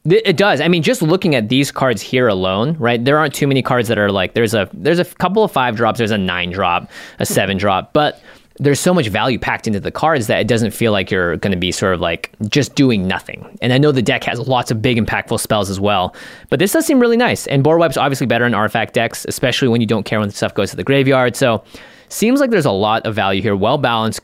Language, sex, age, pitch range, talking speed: English, male, 20-39, 110-145 Hz, 265 wpm